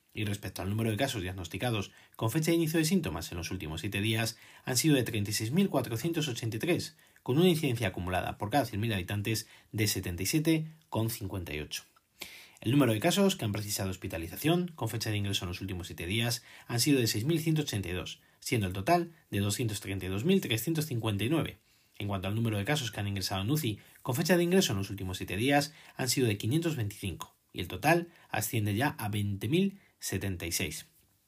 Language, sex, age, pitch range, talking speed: Spanish, male, 30-49, 100-140 Hz, 225 wpm